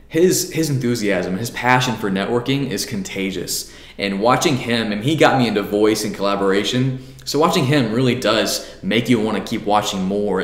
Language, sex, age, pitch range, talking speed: English, male, 20-39, 105-130 Hz, 185 wpm